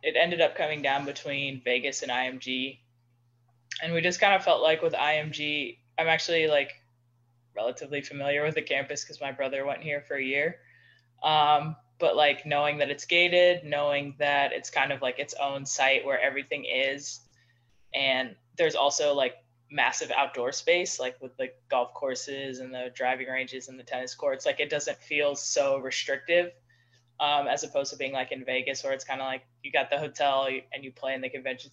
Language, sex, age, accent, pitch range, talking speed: English, female, 10-29, American, 130-150 Hz, 195 wpm